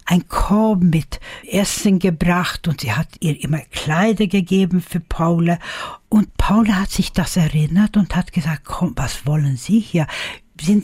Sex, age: female, 60-79